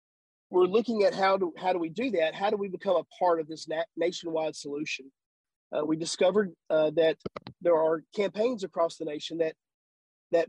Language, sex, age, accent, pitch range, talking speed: English, male, 40-59, American, 155-190 Hz, 185 wpm